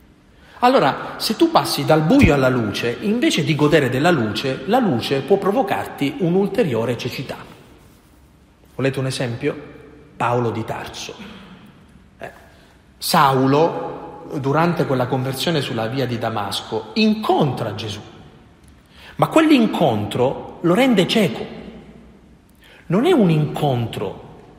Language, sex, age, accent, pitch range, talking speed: Italian, male, 40-59, native, 115-180 Hz, 110 wpm